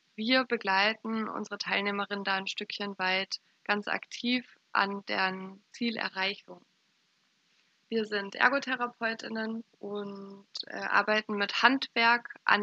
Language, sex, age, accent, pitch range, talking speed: German, female, 20-39, German, 195-235 Hz, 100 wpm